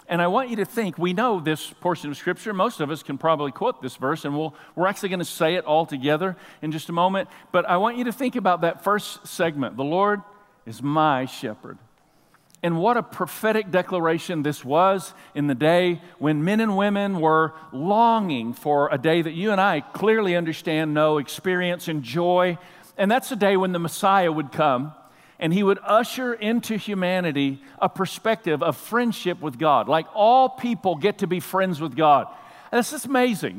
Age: 50-69